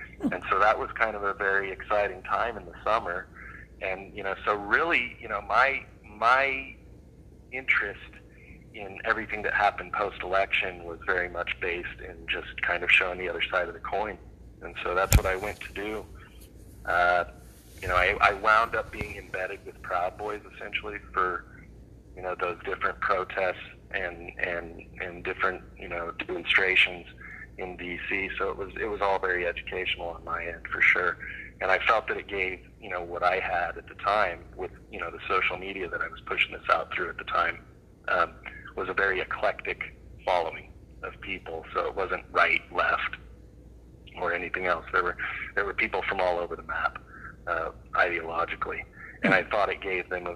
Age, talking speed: 30-49, 185 wpm